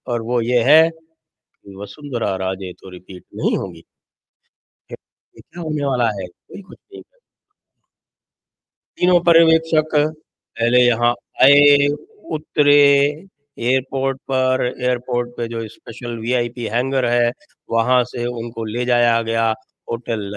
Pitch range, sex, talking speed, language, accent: 115-155 Hz, male, 115 wpm, English, Indian